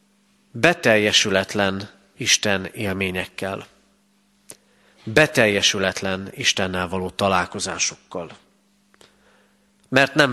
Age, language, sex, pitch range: 30-49, Hungarian, male, 100-150 Hz